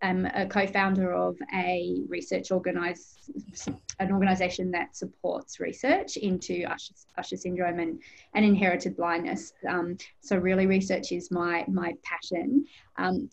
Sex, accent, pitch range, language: female, Australian, 180-205 Hz, English